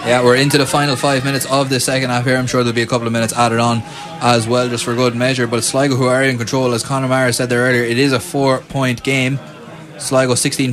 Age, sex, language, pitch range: 20-39, male, English, 120-140 Hz